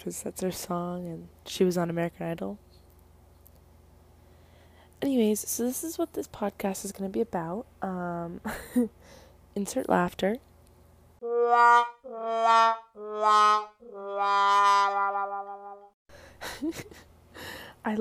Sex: female